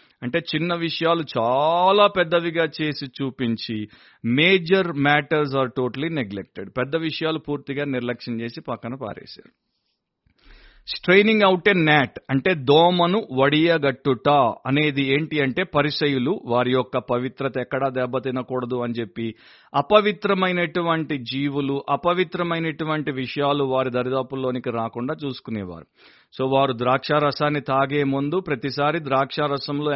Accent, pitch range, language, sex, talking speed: native, 135-175 Hz, Telugu, male, 105 wpm